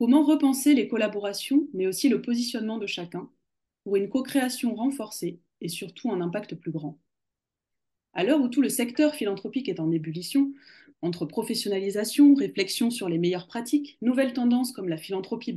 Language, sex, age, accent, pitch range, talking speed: French, female, 20-39, French, 185-255 Hz, 160 wpm